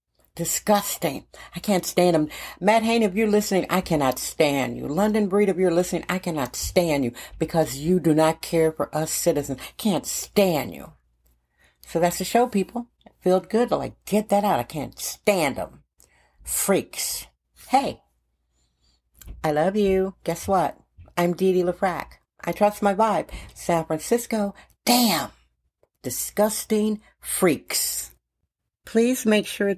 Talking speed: 145 wpm